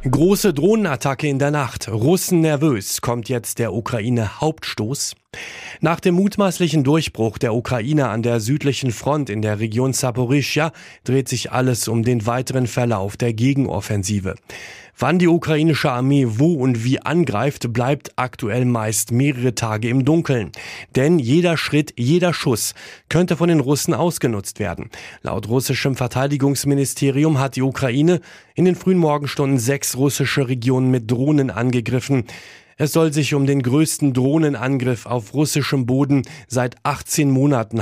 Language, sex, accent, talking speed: German, male, German, 140 wpm